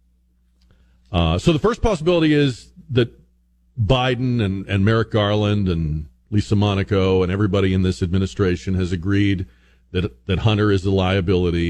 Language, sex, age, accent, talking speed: English, male, 40-59, American, 145 wpm